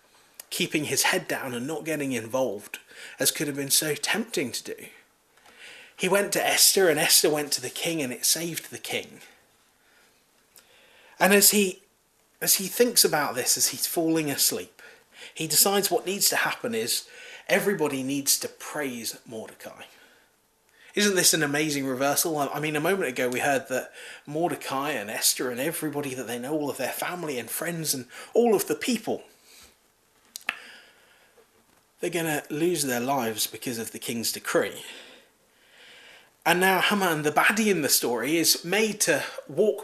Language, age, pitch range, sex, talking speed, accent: English, 30-49, 145-205 Hz, male, 165 wpm, British